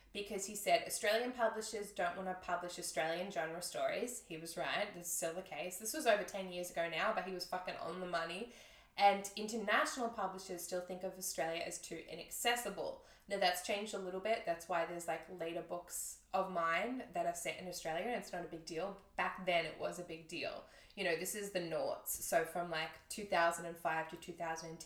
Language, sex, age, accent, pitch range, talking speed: English, female, 10-29, Australian, 170-205 Hz, 220 wpm